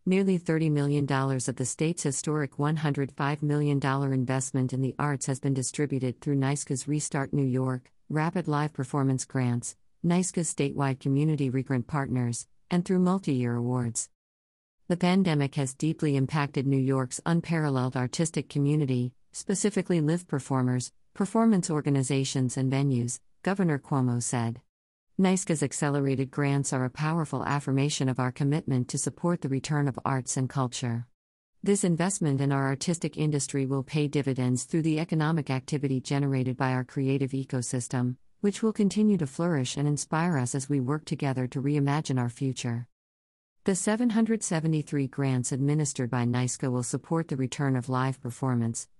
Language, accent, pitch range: English, American, 130-155 Hz